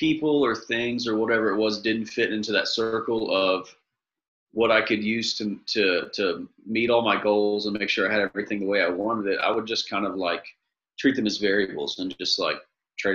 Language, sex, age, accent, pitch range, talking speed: English, male, 40-59, American, 100-115 Hz, 225 wpm